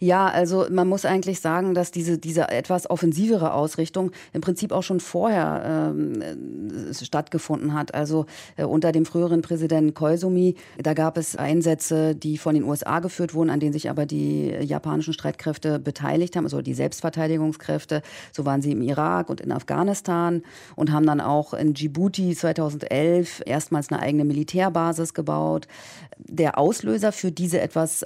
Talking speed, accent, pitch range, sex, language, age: 160 wpm, German, 150-175 Hz, female, German, 40-59